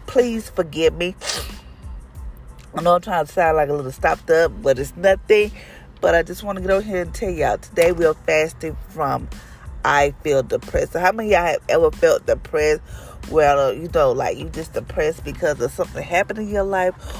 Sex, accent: female, American